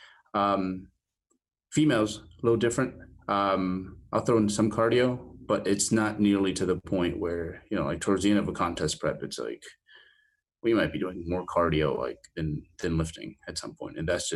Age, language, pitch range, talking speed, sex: 30-49, English, 85-115 Hz, 195 wpm, male